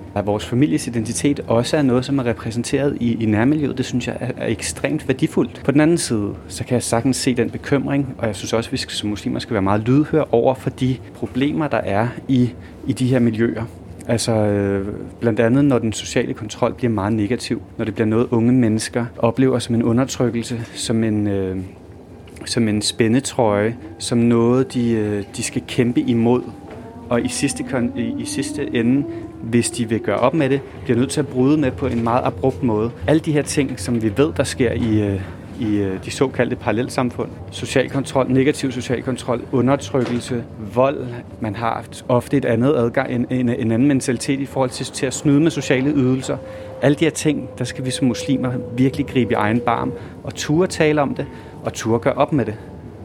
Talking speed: 200 wpm